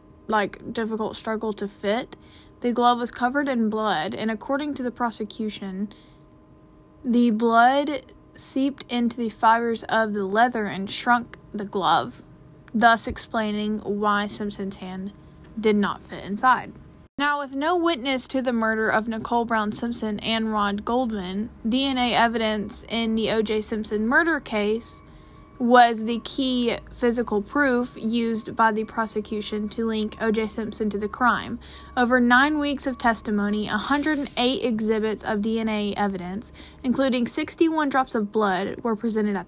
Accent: American